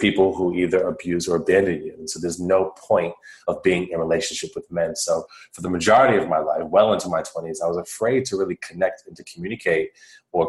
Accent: American